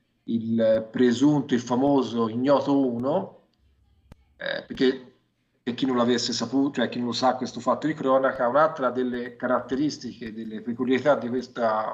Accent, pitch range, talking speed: native, 120-160 Hz, 140 wpm